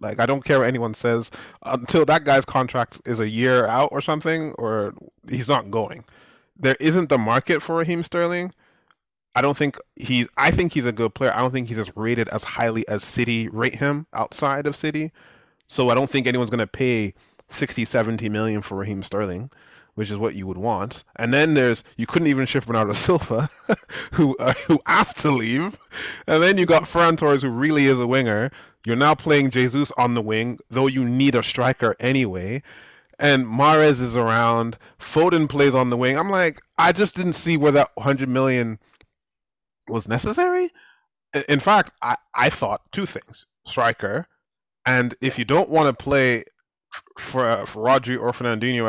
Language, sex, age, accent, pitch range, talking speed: English, male, 20-39, American, 115-150 Hz, 185 wpm